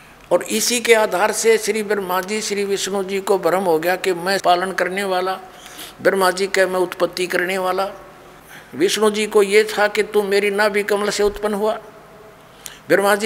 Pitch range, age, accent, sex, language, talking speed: 170-210 Hz, 50-69, native, male, Hindi, 185 wpm